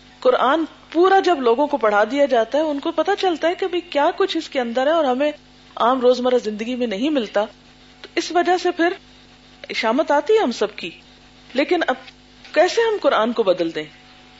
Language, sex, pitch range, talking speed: Urdu, female, 215-310 Hz, 205 wpm